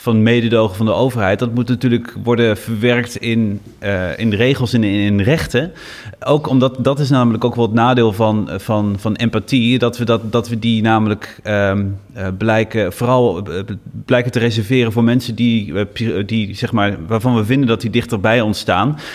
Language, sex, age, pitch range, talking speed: Dutch, male, 30-49, 100-120 Hz, 195 wpm